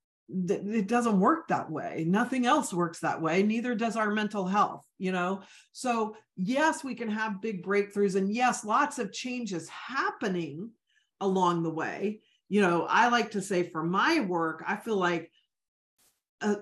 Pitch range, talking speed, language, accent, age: 185-265 Hz, 165 wpm, English, American, 40-59